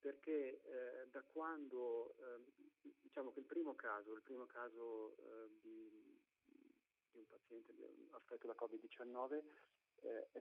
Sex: male